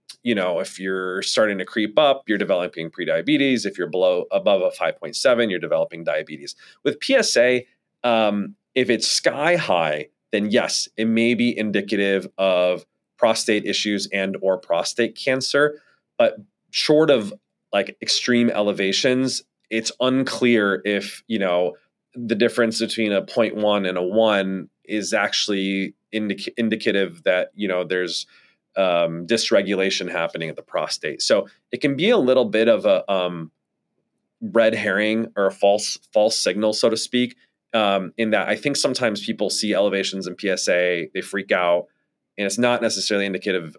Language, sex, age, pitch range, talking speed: English, male, 30-49, 95-120 Hz, 150 wpm